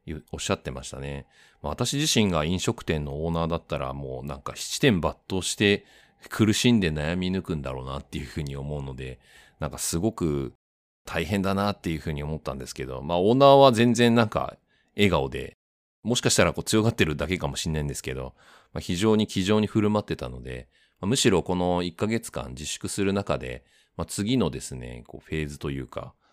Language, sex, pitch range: Japanese, male, 70-100 Hz